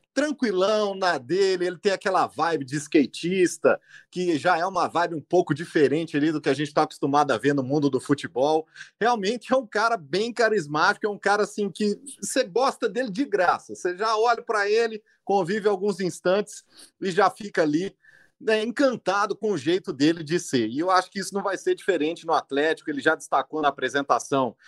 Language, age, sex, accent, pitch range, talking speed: Portuguese, 40-59, male, Brazilian, 165-220 Hz, 200 wpm